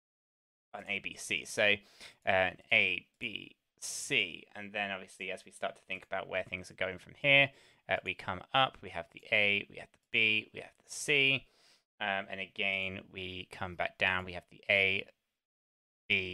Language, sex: English, male